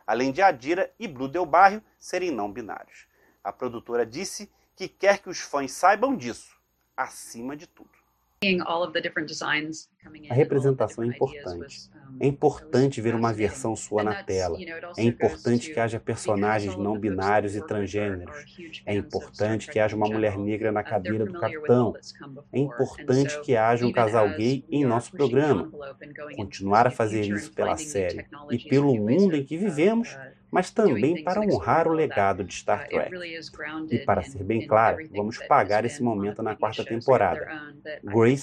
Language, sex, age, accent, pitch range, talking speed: Portuguese, male, 30-49, Brazilian, 110-155 Hz, 155 wpm